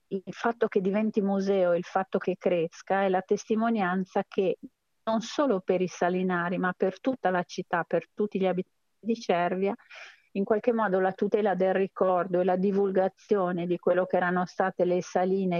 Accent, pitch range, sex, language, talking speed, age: native, 180-210 Hz, female, Italian, 175 wpm, 40-59